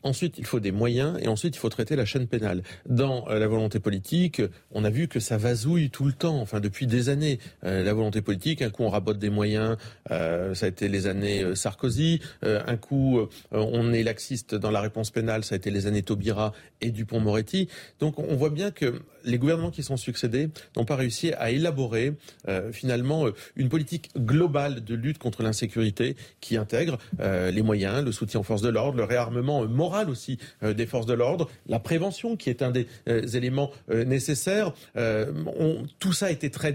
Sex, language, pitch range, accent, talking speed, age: male, French, 110-150 Hz, French, 215 wpm, 40-59